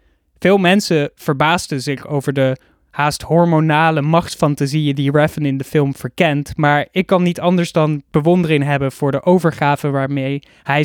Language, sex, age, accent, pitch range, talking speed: Dutch, male, 20-39, Dutch, 140-165 Hz, 155 wpm